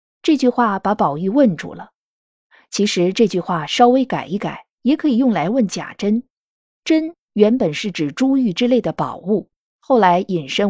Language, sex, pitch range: Chinese, female, 175-255 Hz